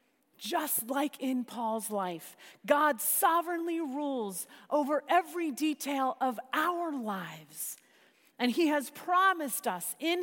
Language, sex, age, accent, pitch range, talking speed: English, female, 40-59, American, 200-280 Hz, 115 wpm